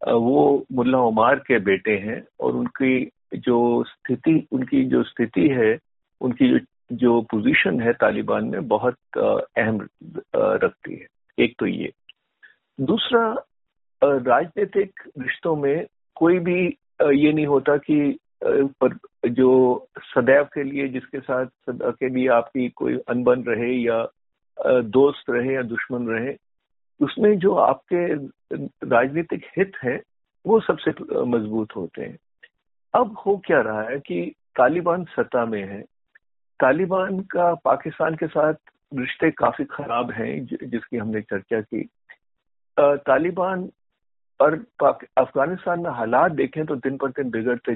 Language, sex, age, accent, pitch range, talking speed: Hindi, male, 50-69, native, 120-180 Hz, 125 wpm